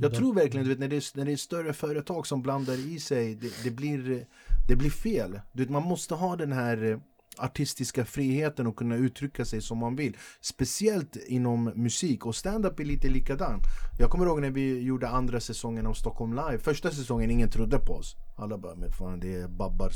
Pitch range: 115-140 Hz